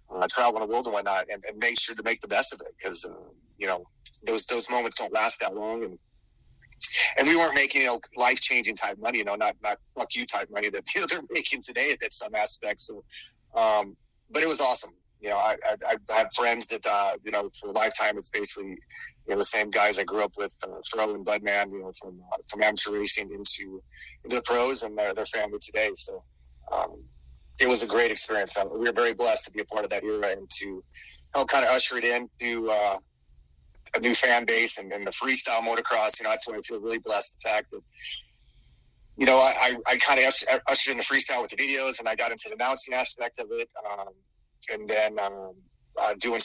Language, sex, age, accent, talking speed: English, male, 30-49, American, 235 wpm